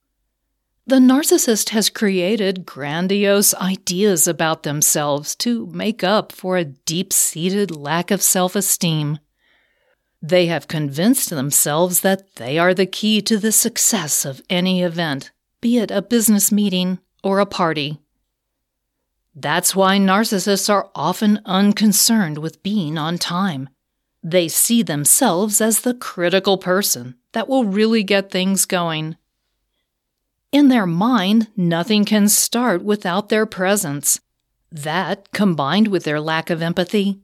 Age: 40-59